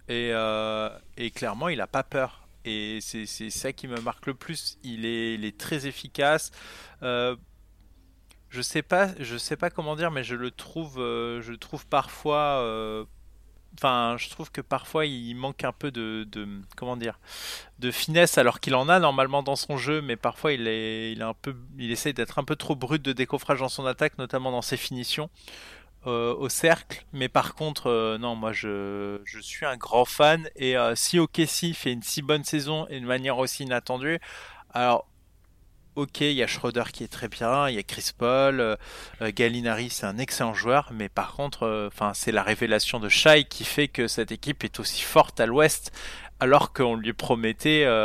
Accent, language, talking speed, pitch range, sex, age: French, French, 205 wpm, 110-145 Hz, male, 20-39